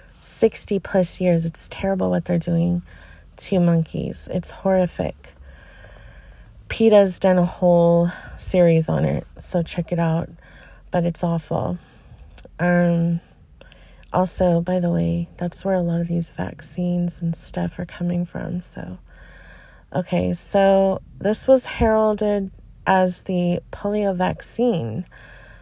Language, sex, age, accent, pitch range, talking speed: English, female, 30-49, American, 165-190 Hz, 125 wpm